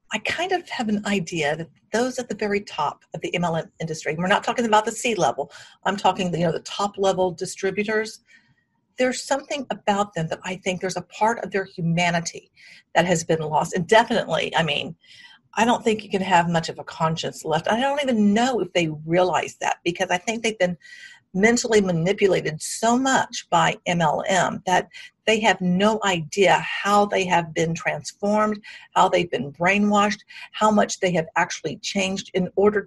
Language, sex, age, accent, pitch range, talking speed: English, female, 50-69, American, 180-225 Hz, 185 wpm